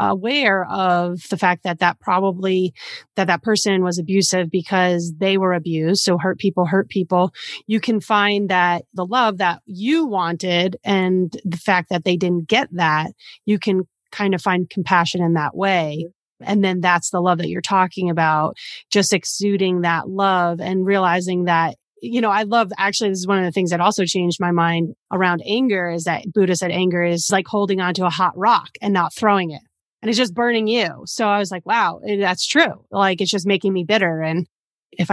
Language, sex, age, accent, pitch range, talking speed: English, female, 30-49, American, 175-200 Hz, 200 wpm